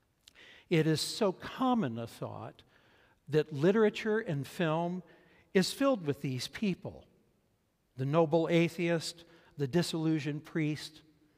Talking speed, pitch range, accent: 110 wpm, 135-175 Hz, American